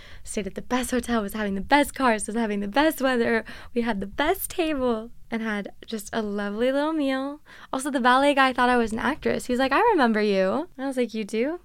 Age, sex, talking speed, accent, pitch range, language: 10-29, female, 235 wpm, American, 215-275 Hz, English